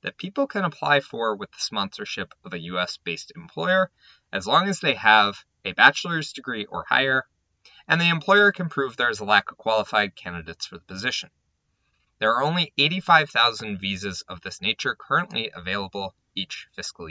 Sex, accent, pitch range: male, American, 105-170 Hz